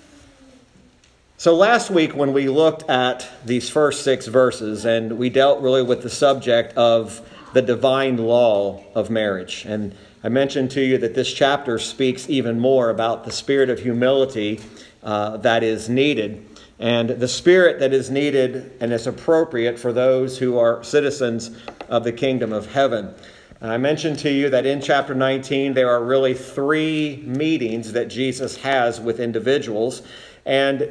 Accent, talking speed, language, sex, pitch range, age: American, 160 wpm, English, male, 115-135 Hz, 40-59